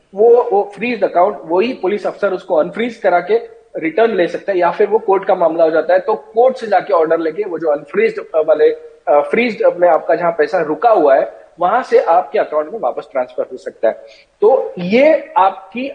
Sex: male